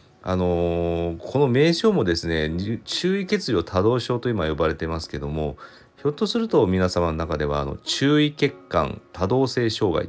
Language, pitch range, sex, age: Japanese, 80-115 Hz, male, 40-59